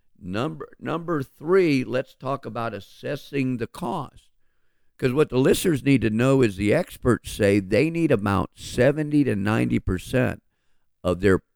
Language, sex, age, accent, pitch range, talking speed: English, male, 50-69, American, 100-130 Hz, 145 wpm